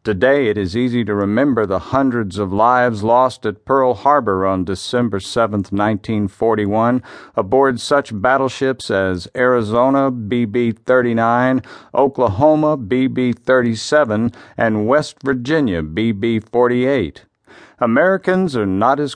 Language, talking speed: English, 105 wpm